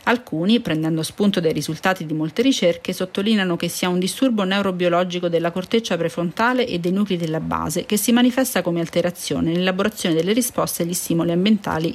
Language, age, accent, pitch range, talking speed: Italian, 40-59, native, 165-210 Hz, 165 wpm